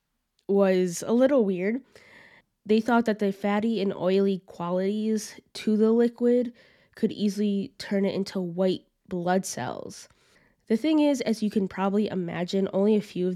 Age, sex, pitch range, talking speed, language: 10-29, female, 180-215 Hz, 155 wpm, English